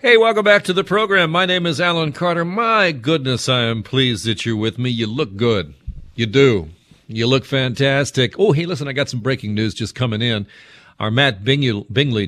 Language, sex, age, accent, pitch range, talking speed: English, male, 50-69, American, 100-130 Hz, 205 wpm